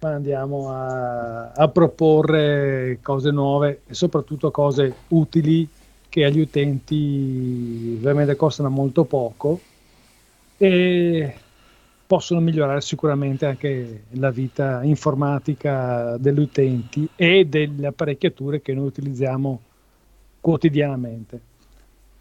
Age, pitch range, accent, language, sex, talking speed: 40-59, 130-155 Hz, native, Italian, male, 95 wpm